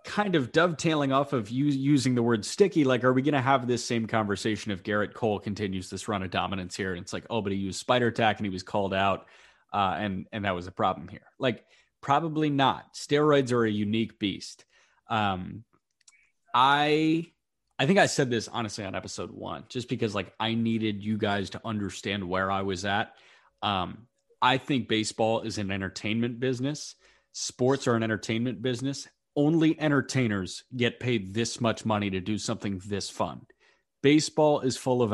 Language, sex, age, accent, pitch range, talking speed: English, male, 30-49, American, 105-140 Hz, 190 wpm